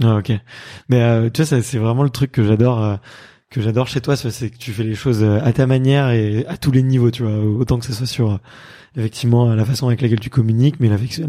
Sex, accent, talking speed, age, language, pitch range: male, French, 260 wpm, 20-39, French, 115-135 Hz